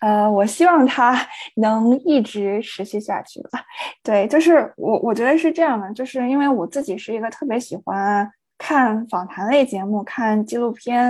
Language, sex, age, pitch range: Chinese, female, 10-29, 210-275 Hz